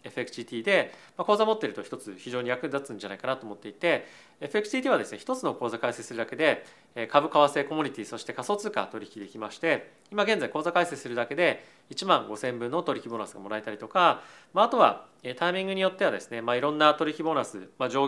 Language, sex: Japanese, male